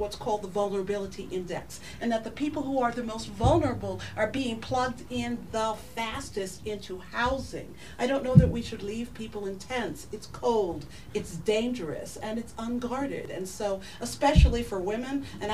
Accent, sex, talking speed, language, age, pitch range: American, female, 175 wpm, English, 50-69, 190-245 Hz